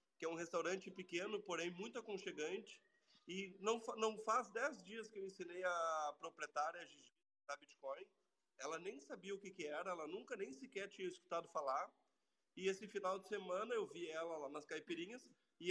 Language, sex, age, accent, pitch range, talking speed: Portuguese, male, 30-49, Brazilian, 160-210 Hz, 185 wpm